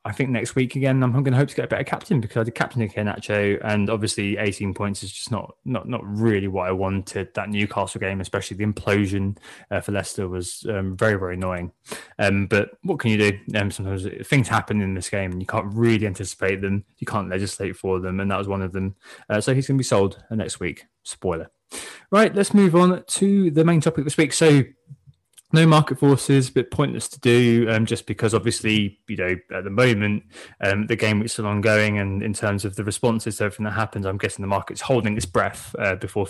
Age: 20-39